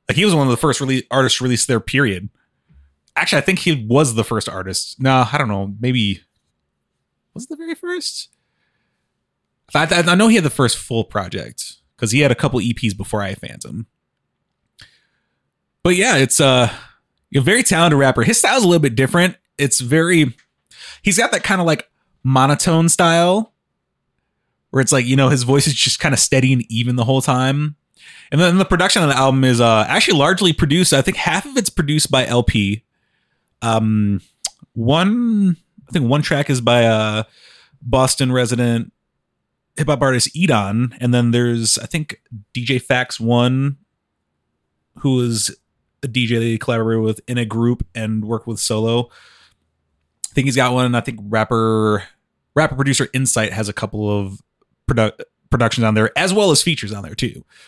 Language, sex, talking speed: English, male, 185 wpm